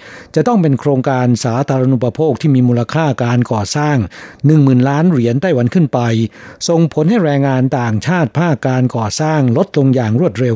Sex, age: male, 60-79